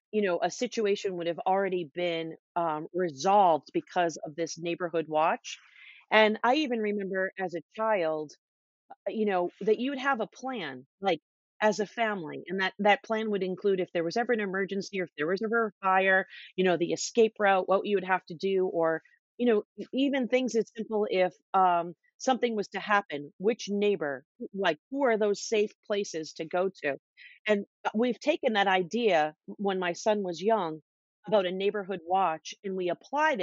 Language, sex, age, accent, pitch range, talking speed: English, female, 40-59, American, 175-220 Hz, 190 wpm